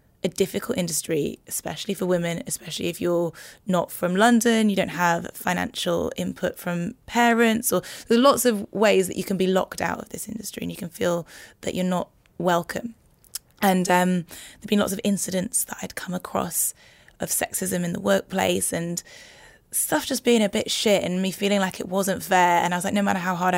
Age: 20-39